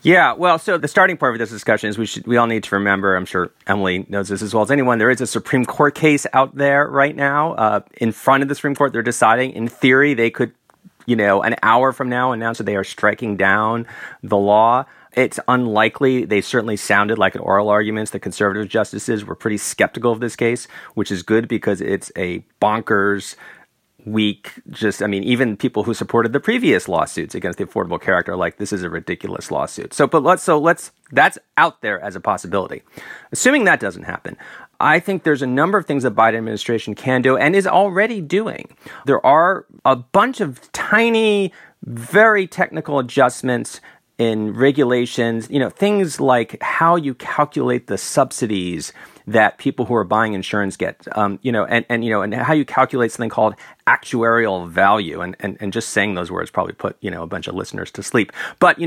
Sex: male